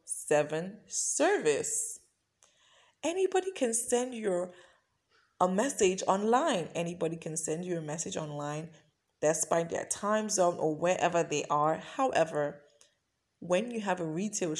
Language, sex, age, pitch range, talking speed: English, female, 20-39, 155-215 Hz, 125 wpm